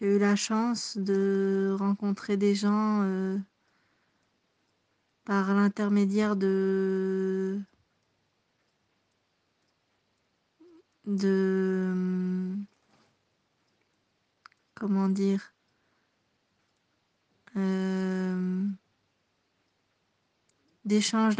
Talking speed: 50 wpm